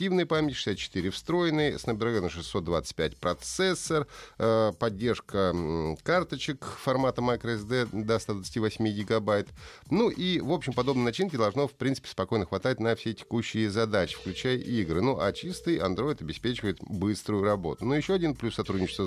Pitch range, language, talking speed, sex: 95-130 Hz, Russian, 130 wpm, male